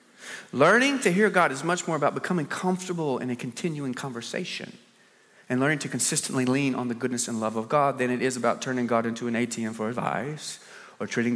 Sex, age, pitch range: male, 30-49, 125-185 Hz